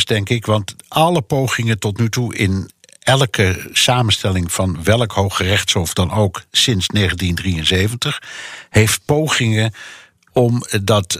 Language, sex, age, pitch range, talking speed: Dutch, male, 60-79, 100-125 Hz, 115 wpm